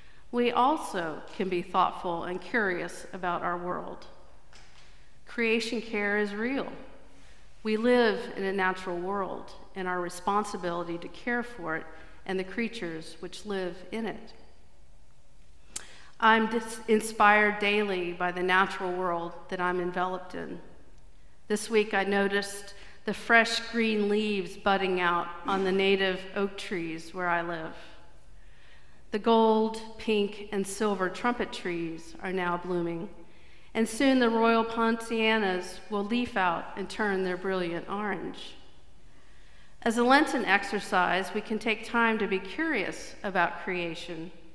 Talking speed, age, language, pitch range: 135 wpm, 50-69, English, 175-215 Hz